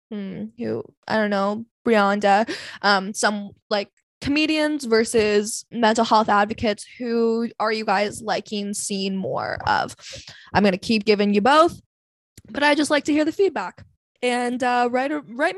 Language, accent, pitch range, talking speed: English, American, 210-270 Hz, 160 wpm